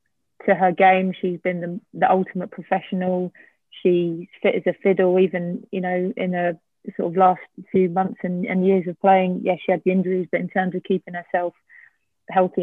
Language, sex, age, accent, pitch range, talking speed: English, female, 20-39, British, 180-190 Hz, 195 wpm